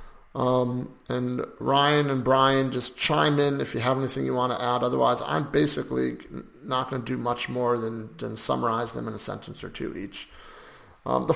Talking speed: 195 wpm